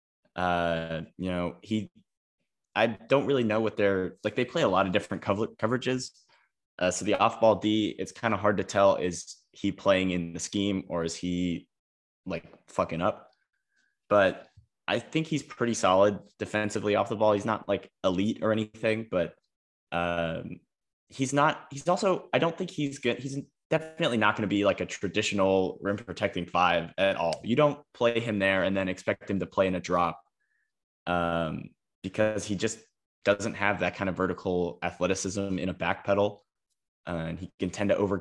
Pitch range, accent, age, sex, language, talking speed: 90-110 Hz, American, 20-39, male, English, 185 wpm